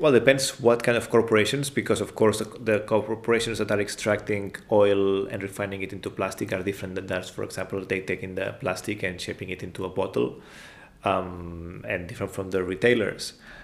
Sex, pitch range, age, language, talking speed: male, 100-115 Hz, 30-49, Dutch, 190 wpm